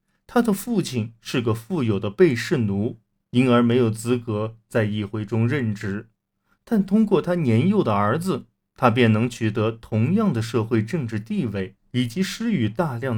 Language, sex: Chinese, male